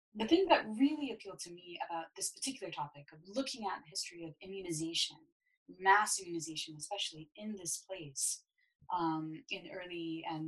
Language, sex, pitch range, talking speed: English, female, 160-225 Hz, 160 wpm